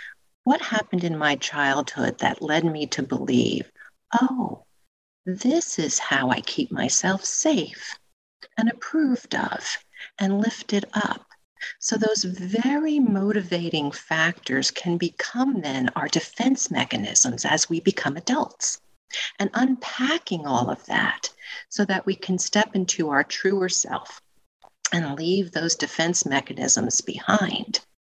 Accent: American